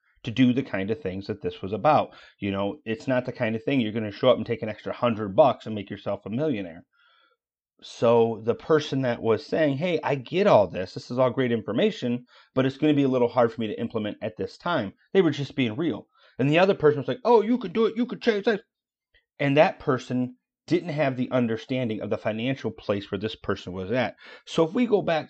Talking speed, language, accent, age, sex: 245 wpm, English, American, 30-49, male